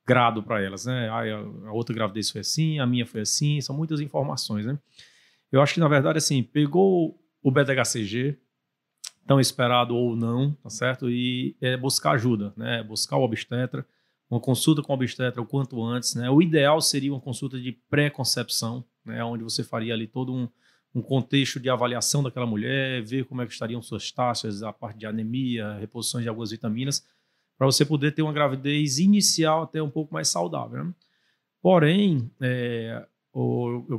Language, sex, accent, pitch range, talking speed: Portuguese, male, Brazilian, 115-140 Hz, 180 wpm